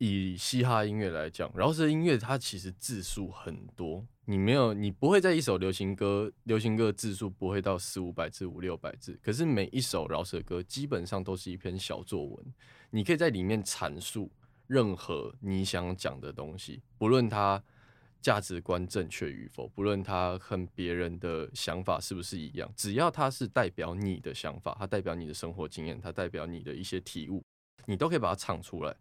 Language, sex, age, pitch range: Chinese, male, 20-39, 90-125 Hz